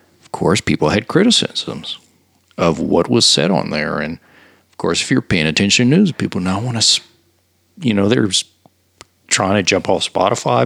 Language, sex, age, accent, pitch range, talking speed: English, male, 50-69, American, 85-115 Hz, 180 wpm